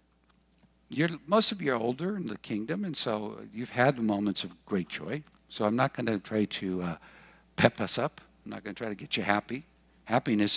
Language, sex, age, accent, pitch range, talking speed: English, male, 60-79, American, 90-140 Hz, 215 wpm